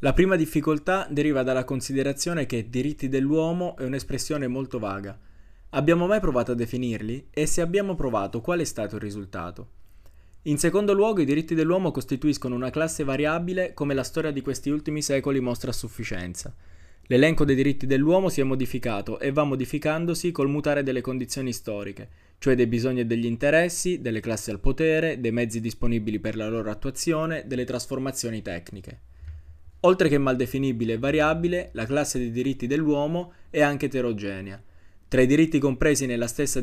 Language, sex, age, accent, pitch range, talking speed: Italian, male, 20-39, native, 115-150 Hz, 165 wpm